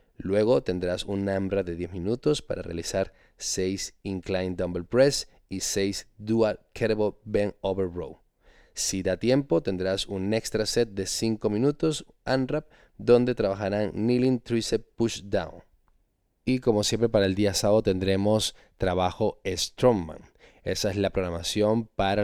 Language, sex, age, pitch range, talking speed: Spanish, male, 20-39, 95-110 Hz, 140 wpm